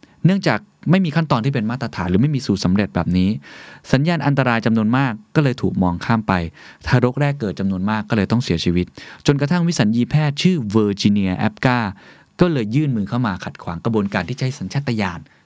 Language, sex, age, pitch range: Thai, male, 20-39, 95-135 Hz